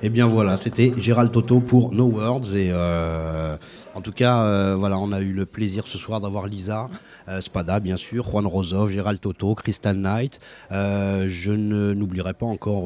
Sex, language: male, French